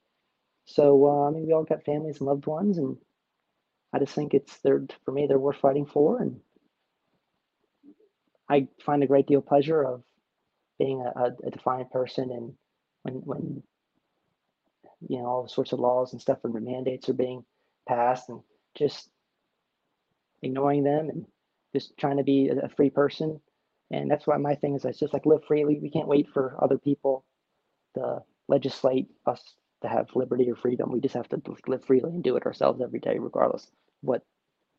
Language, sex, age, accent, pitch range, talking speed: English, male, 30-49, American, 130-155 Hz, 180 wpm